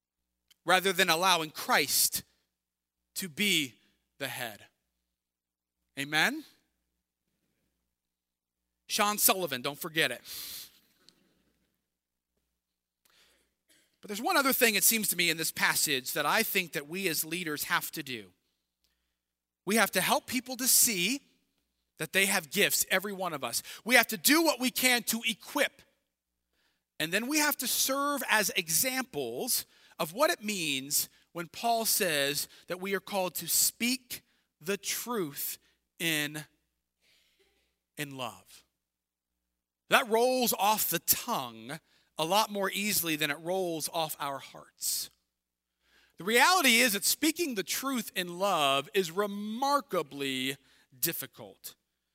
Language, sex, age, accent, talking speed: English, male, 40-59, American, 130 wpm